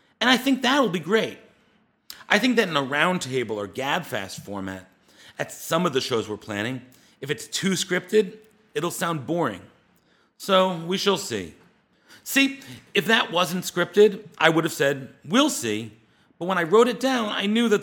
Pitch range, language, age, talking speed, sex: 125-190 Hz, English, 40-59, 180 wpm, male